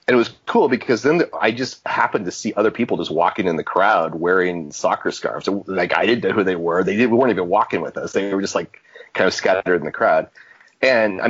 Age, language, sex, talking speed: 30-49, English, male, 255 wpm